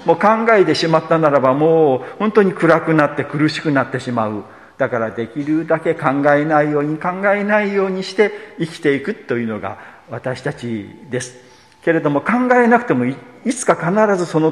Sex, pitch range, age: male, 130-190 Hz, 50-69